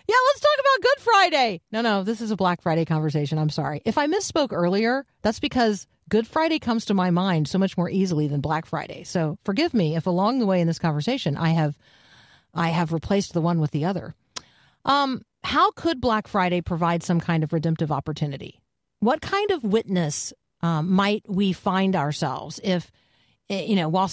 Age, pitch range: 40-59, 165-220 Hz